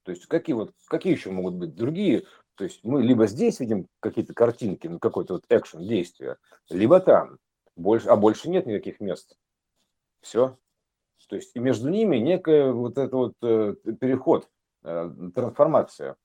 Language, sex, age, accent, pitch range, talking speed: Russian, male, 50-69, native, 105-150 Hz, 150 wpm